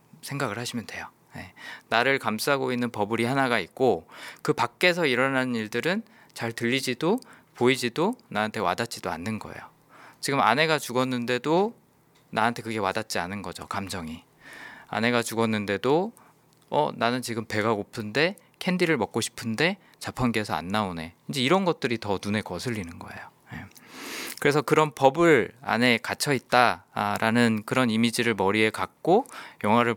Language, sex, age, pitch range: Korean, male, 20-39, 105-145 Hz